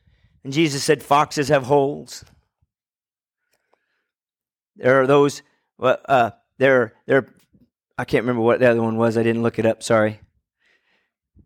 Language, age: English, 40-59